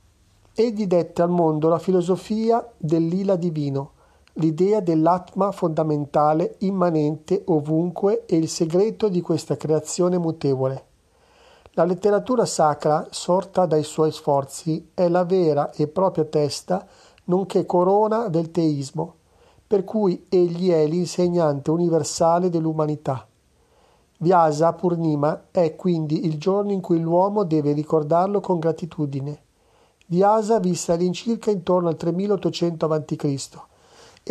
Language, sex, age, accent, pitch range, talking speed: Italian, male, 40-59, native, 155-190 Hz, 115 wpm